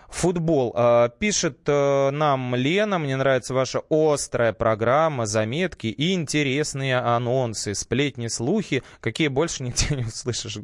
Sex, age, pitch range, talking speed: male, 20-39, 115-165 Hz, 115 wpm